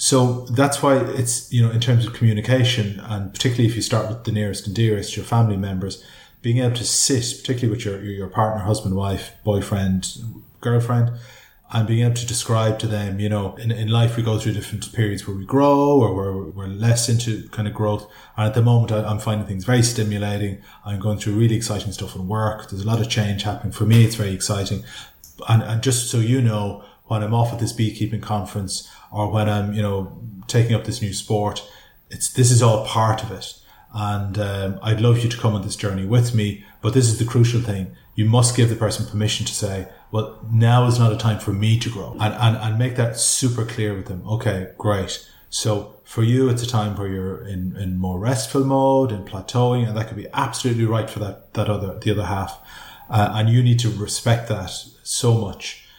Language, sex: English, male